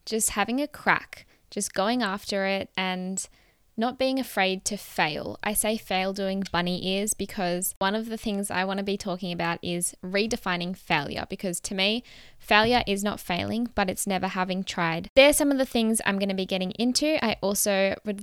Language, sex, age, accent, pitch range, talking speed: English, female, 10-29, Australian, 190-215 Hz, 200 wpm